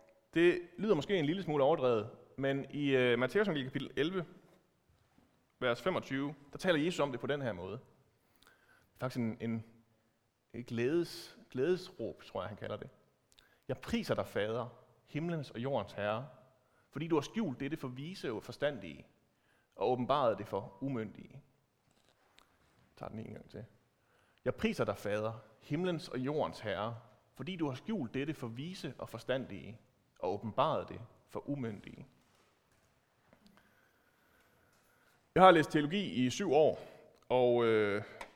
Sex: male